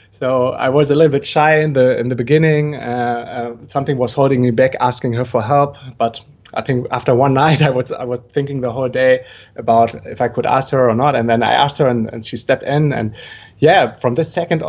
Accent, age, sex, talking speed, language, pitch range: German, 20-39, male, 245 wpm, English, 120-150 Hz